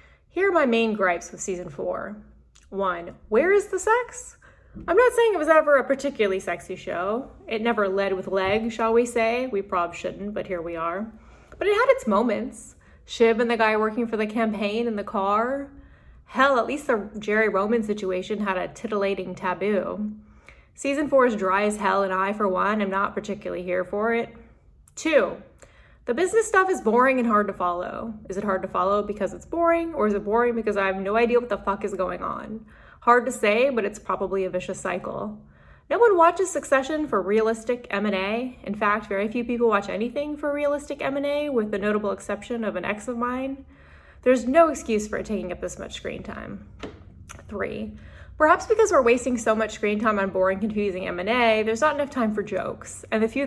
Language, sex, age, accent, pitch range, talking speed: English, female, 20-39, American, 195-255 Hz, 205 wpm